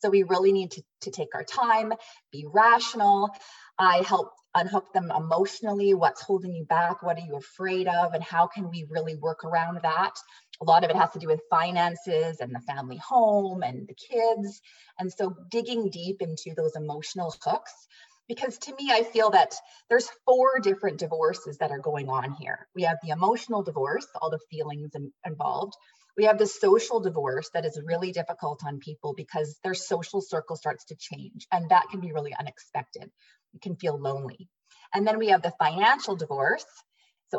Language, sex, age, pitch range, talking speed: English, female, 30-49, 160-220 Hz, 190 wpm